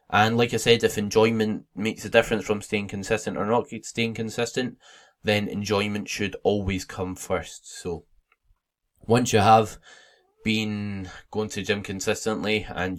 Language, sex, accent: English, male, British